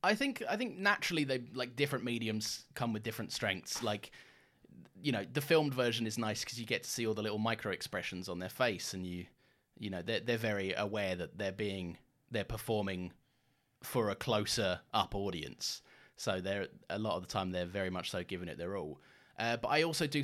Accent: British